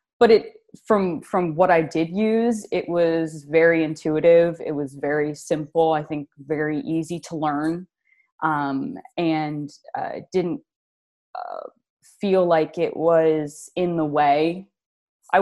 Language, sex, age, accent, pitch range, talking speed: English, female, 20-39, American, 150-185 Hz, 140 wpm